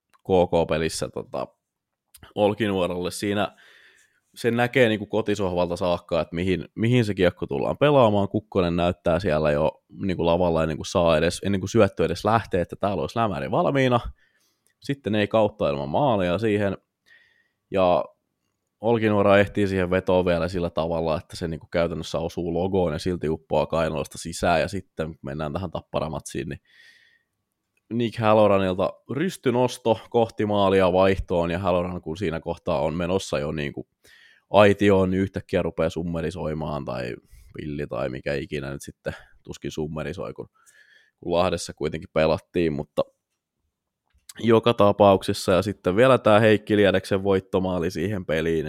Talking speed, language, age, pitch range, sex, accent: 140 wpm, Finnish, 20-39, 85-105 Hz, male, native